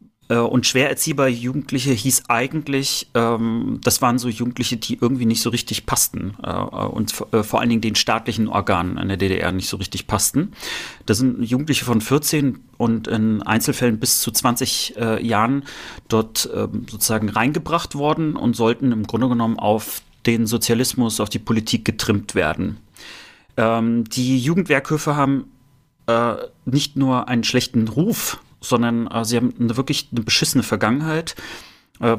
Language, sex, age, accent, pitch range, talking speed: German, male, 30-49, German, 115-135 Hz, 155 wpm